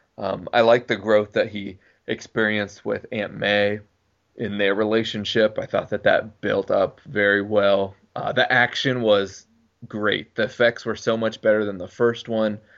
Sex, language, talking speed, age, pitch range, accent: male, English, 180 wpm, 20-39, 100-115 Hz, American